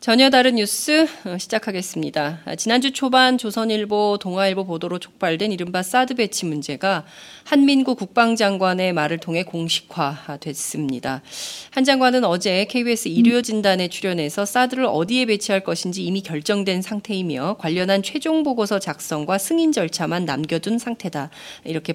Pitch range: 165-230 Hz